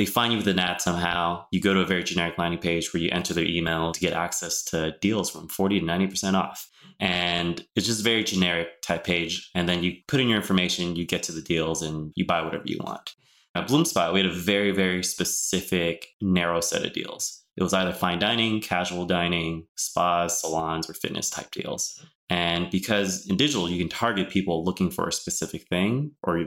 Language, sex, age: English, male, 20-39